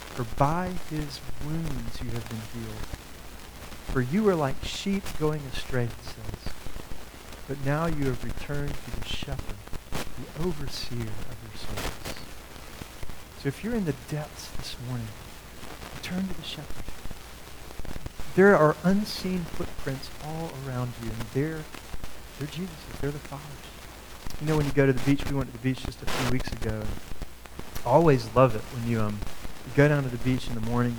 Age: 40-59